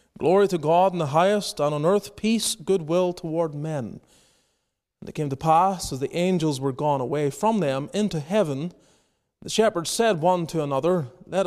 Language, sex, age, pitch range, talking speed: English, male, 30-49, 140-190 Hz, 185 wpm